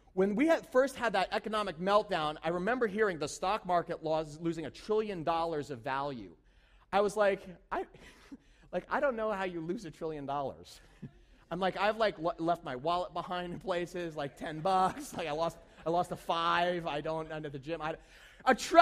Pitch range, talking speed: 160-220 Hz, 205 wpm